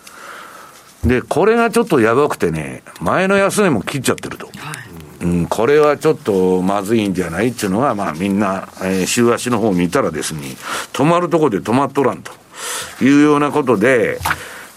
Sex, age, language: male, 60-79, Japanese